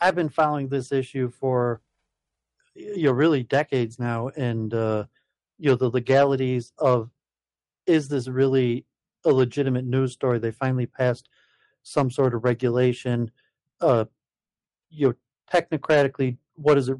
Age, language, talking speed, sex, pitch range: 40-59, English, 140 wpm, male, 120-140 Hz